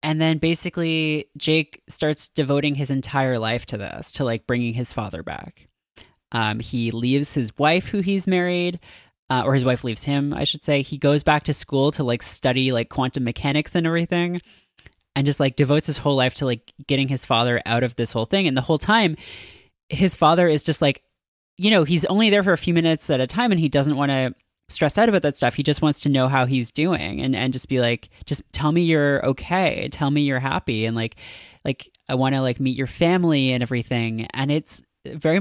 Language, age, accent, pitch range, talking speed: English, 20-39, American, 120-155 Hz, 225 wpm